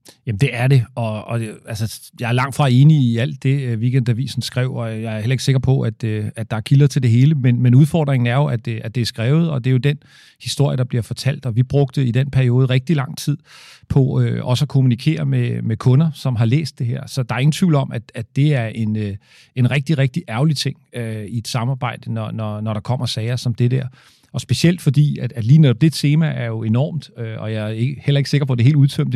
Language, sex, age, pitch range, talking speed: Danish, male, 40-59, 120-145 Hz, 265 wpm